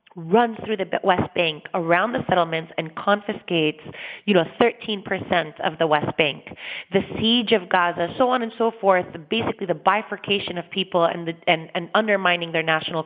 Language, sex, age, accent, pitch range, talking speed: English, female, 30-49, American, 185-255 Hz, 175 wpm